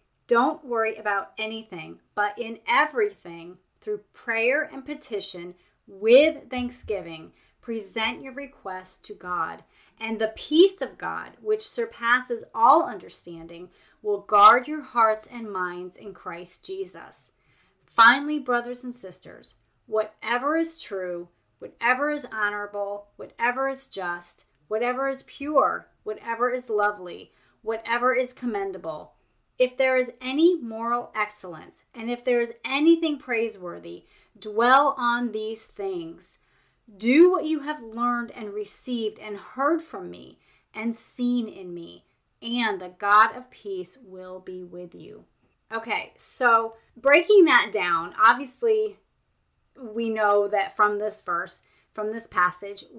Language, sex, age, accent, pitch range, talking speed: English, female, 30-49, American, 205-270 Hz, 130 wpm